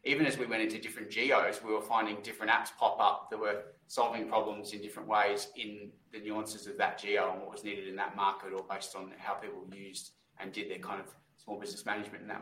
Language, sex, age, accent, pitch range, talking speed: English, male, 20-39, Australian, 105-110 Hz, 240 wpm